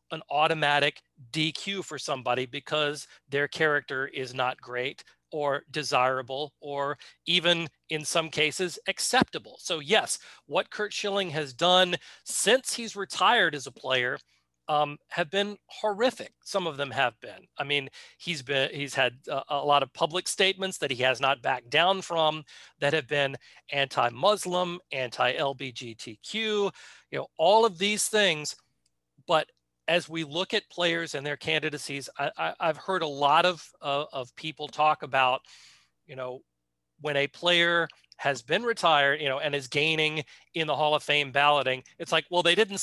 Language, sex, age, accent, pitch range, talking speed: English, male, 40-59, American, 135-175 Hz, 165 wpm